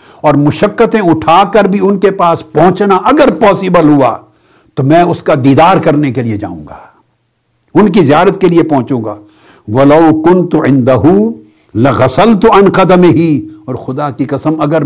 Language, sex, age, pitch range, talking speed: Urdu, male, 60-79, 145-180 Hz, 165 wpm